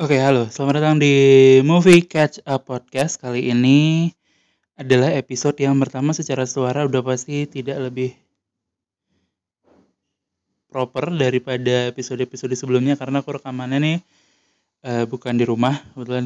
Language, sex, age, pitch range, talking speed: Indonesian, male, 20-39, 120-140 Hz, 130 wpm